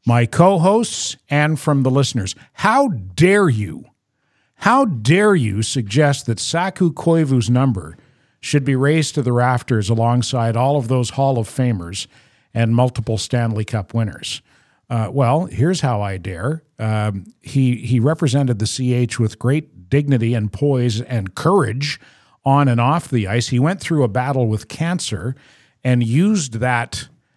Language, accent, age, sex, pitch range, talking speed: English, American, 50-69, male, 115-155 Hz, 150 wpm